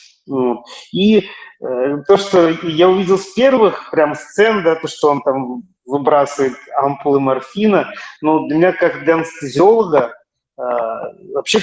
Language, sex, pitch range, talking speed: Russian, male, 140-180 Hz, 125 wpm